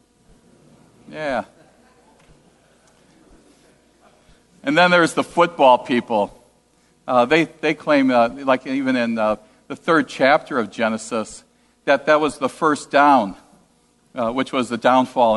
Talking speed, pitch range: 125 wpm, 140-195 Hz